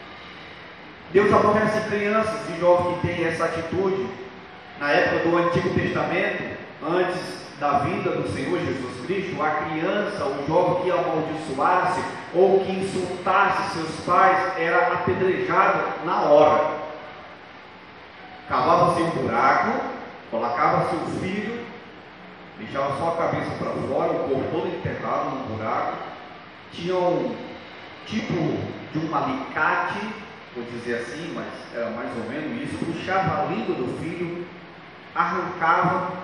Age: 30-49